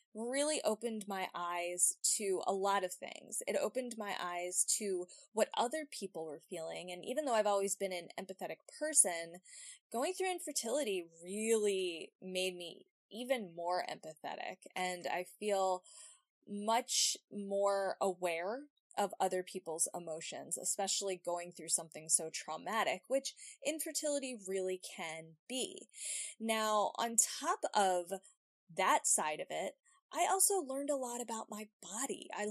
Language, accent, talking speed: English, American, 140 wpm